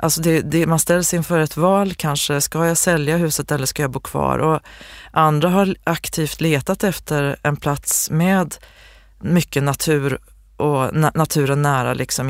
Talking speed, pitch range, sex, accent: 165 wpm, 145-165 Hz, female, native